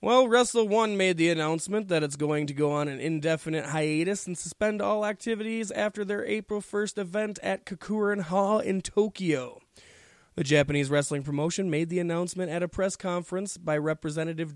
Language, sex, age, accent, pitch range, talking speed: English, male, 20-39, American, 150-175 Hz, 175 wpm